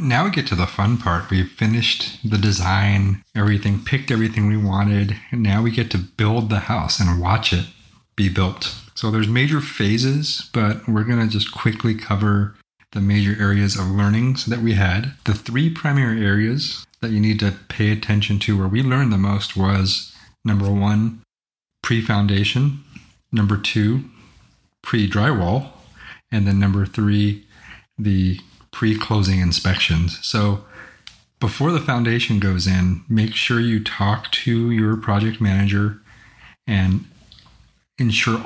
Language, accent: English, American